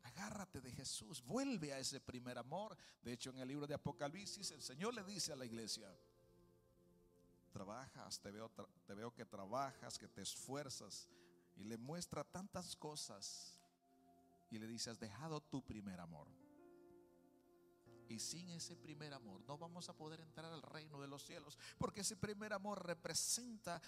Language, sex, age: English, male, 60-79